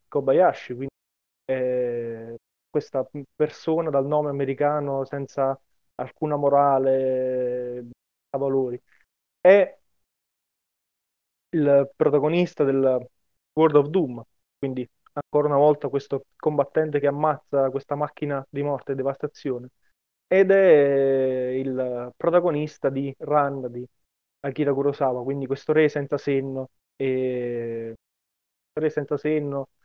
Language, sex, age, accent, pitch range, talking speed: Italian, male, 20-39, native, 130-155 Hz, 105 wpm